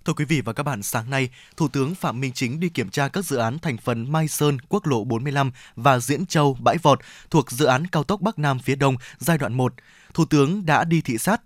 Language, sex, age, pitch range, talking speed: Vietnamese, male, 20-39, 125-155 Hz, 255 wpm